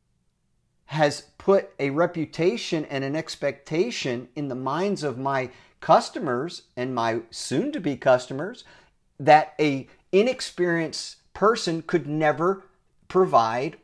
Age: 50-69